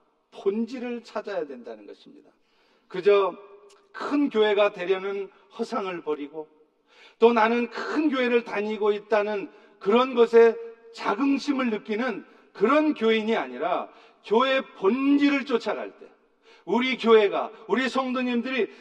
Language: Korean